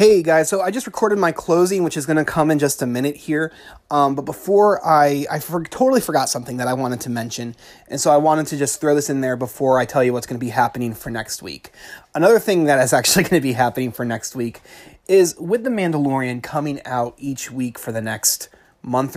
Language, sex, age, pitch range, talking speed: English, male, 20-39, 125-160 Hz, 240 wpm